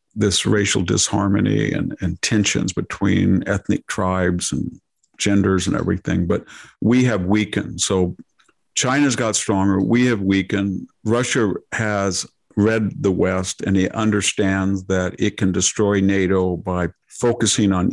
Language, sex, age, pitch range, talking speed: English, male, 50-69, 95-105 Hz, 135 wpm